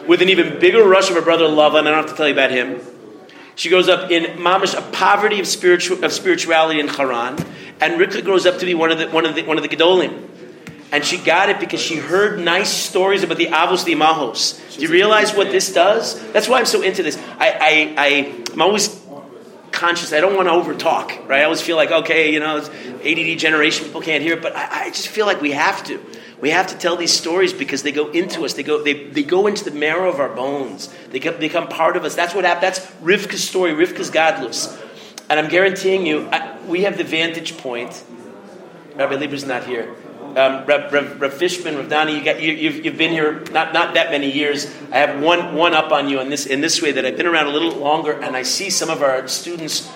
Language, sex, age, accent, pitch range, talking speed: English, male, 40-59, American, 145-180 Hz, 245 wpm